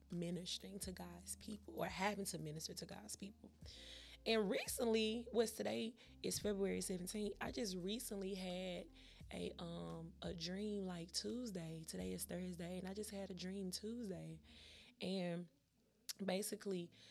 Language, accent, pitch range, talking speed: English, American, 170-200 Hz, 140 wpm